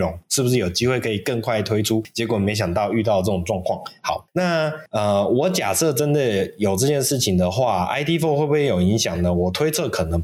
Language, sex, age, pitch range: Chinese, male, 20-39, 95-135 Hz